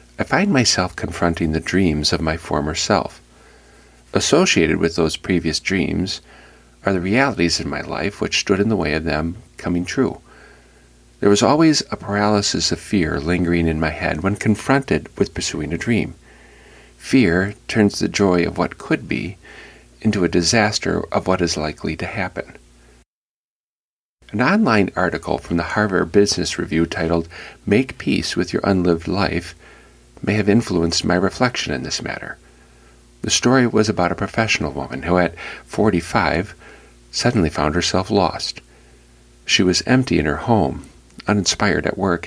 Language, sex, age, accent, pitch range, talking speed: English, male, 50-69, American, 75-100 Hz, 155 wpm